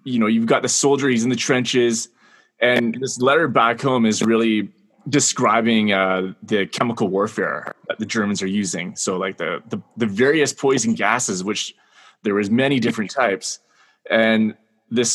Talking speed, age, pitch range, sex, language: 170 wpm, 20-39, 110-135 Hz, male, English